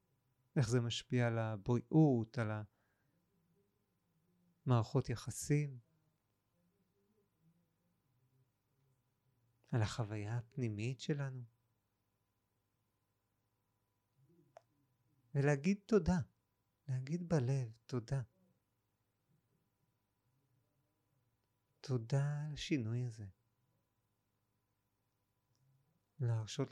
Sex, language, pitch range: male, Hebrew, 100-135 Hz